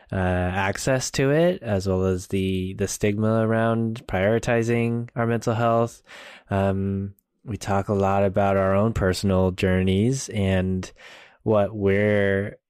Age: 20-39